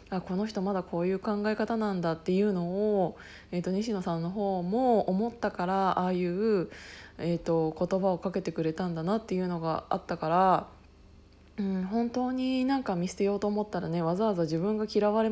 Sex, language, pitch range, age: female, Japanese, 175-230 Hz, 20-39